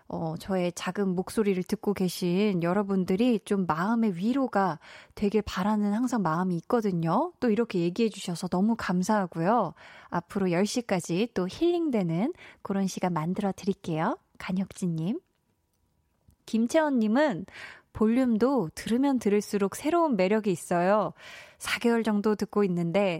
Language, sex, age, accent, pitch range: Korean, female, 20-39, native, 185-240 Hz